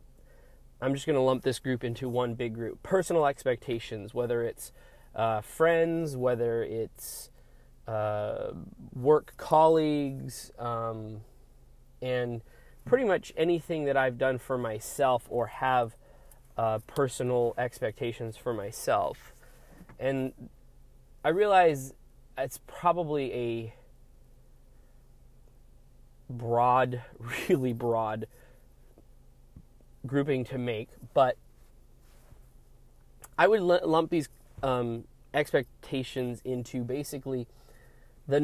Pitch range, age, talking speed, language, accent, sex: 120-140 Hz, 20-39, 95 wpm, English, American, male